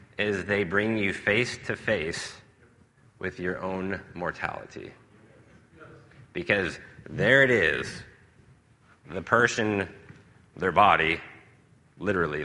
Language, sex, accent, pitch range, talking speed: English, male, American, 95-125 Hz, 85 wpm